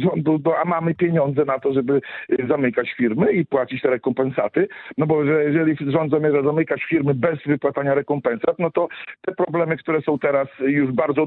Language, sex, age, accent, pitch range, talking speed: Polish, male, 50-69, native, 145-180 Hz, 170 wpm